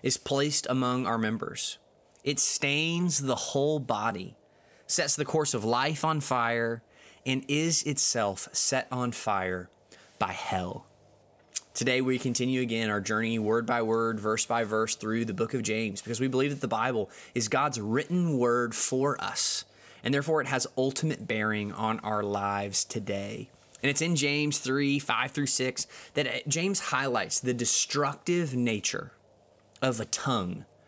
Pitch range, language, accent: 115-145 Hz, English, American